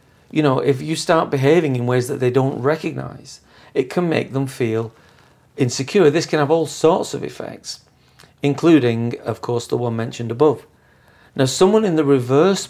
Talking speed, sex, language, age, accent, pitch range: 175 wpm, male, English, 40-59, British, 120-150 Hz